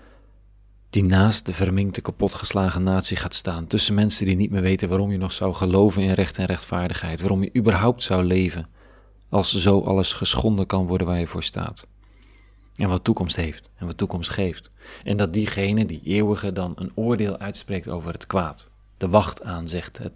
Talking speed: 185 wpm